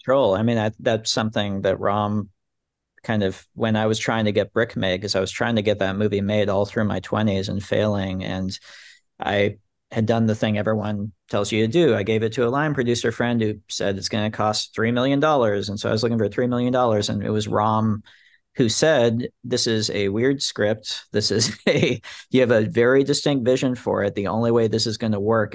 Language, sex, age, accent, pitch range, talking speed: English, male, 40-59, American, 100-115 Hz, 230 wpm